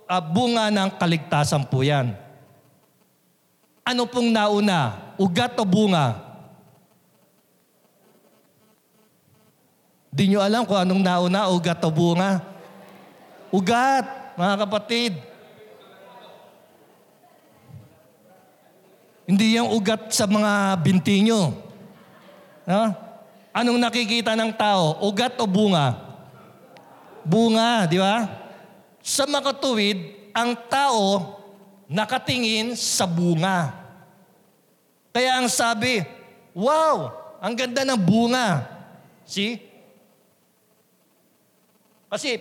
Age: 50-69